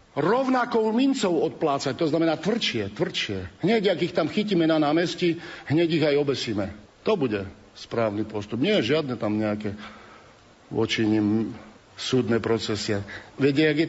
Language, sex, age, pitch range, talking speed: Slovak, male, 50-69, 120-195 Hz, 145 wpm